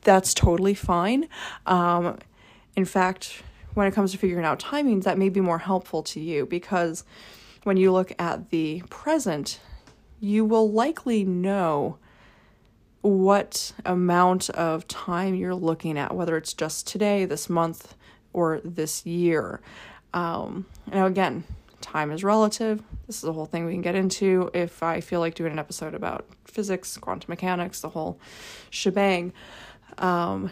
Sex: female